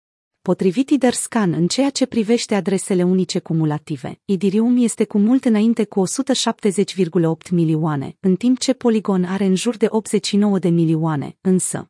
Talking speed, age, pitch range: 145 wpm, 30-49, 175-225 Hz